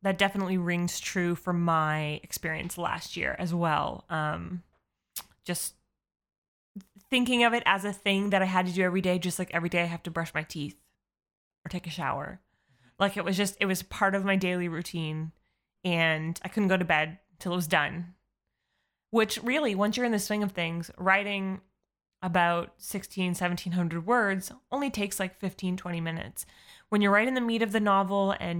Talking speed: 190 wpm